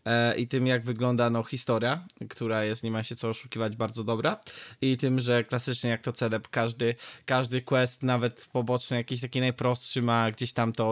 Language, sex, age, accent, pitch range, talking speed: Polish, male, 20-39, native, 115-135 Hz, 185 wpm